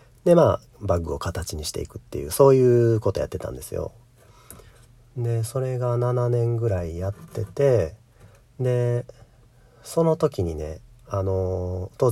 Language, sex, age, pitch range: Japanese, male, 40-59, 100-130 Hz